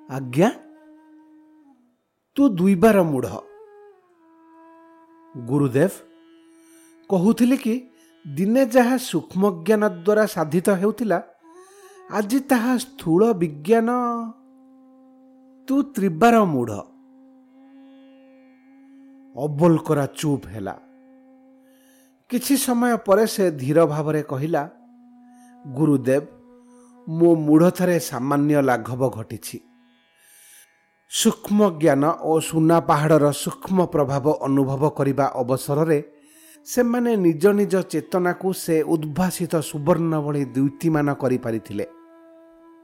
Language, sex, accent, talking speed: English, male, Indian, 85 wpm